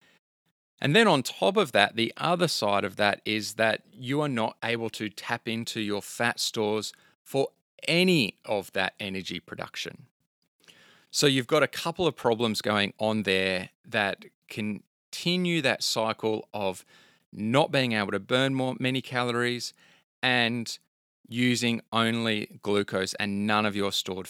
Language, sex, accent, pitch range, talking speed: English, male, Australian, 105-130 Hz, 150 wpm